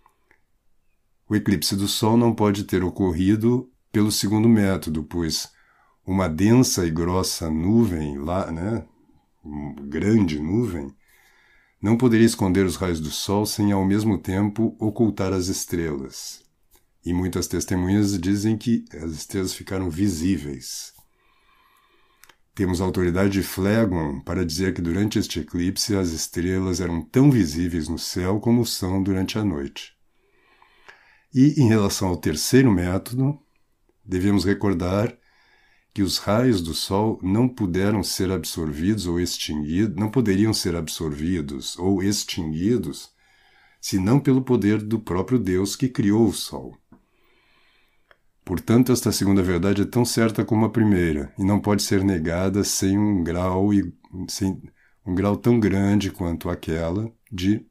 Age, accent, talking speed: 50-69, Brazilian, 125 wpm